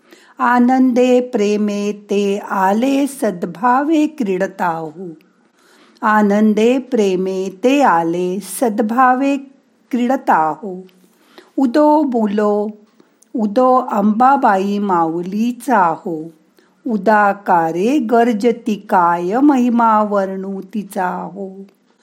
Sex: female